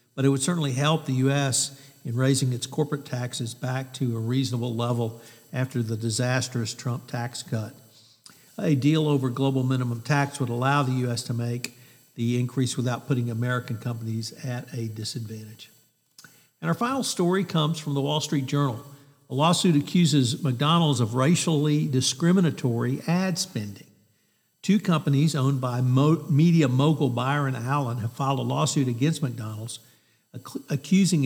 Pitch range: 125-150 Hz